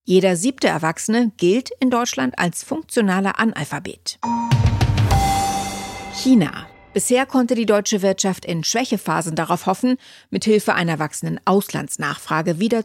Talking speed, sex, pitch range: 110 wpm, female, 165-220 Hz